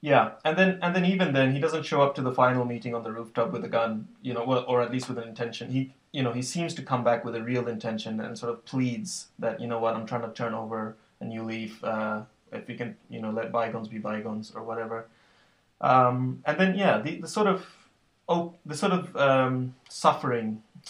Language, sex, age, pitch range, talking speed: English, male, 30-49, 115-135 Hz, 240 wpm